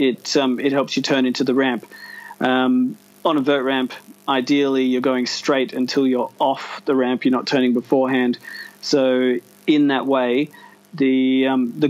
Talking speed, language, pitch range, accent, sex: 170 wpm, English, 130-145 Hz, Australian, male